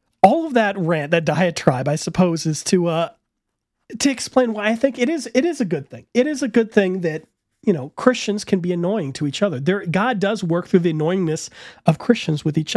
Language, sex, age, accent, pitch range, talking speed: English, male, 40-59, American, 150-210 Hz, 230 wpm